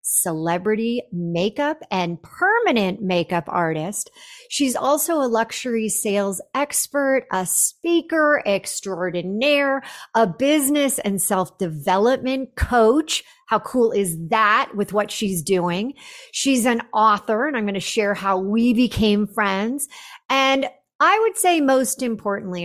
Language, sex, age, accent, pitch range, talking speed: English, female, 40-59, American, 180-260 Hz, 120 wpm